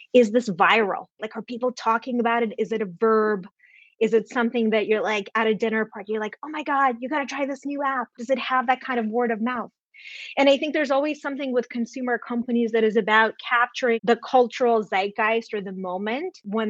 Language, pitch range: English, 200-240 Hz